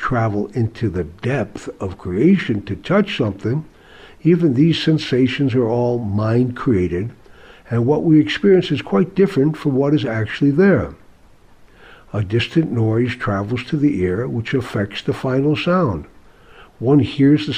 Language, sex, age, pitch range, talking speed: English, male, 60-79, 115-150 Hz, 145 wpm